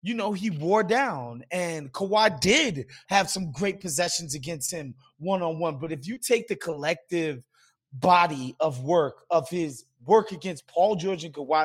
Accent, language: American, English